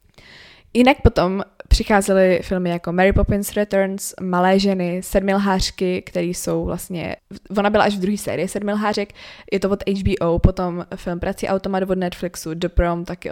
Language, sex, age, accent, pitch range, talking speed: Czech, female, 20-39, native, 180-225 Hz, 155 wpm